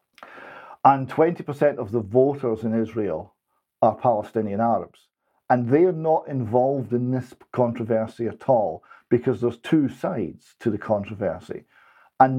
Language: English